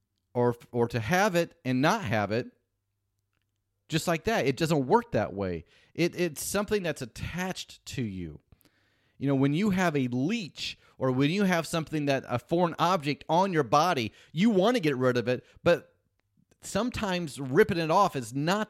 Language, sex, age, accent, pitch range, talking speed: English, male, 30-49, American, 110-160 Hz, 185 wpm